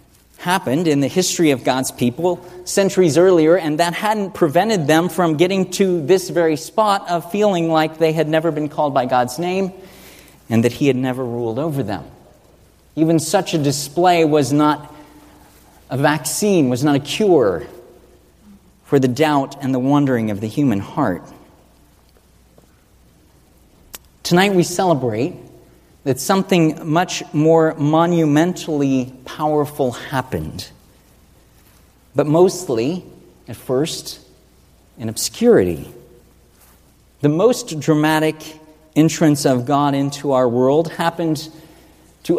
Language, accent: English, American